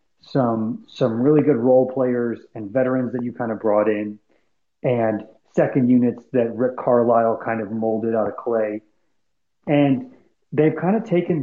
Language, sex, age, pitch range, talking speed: English, male, 40-59, 125-160 Hz, 165 wpm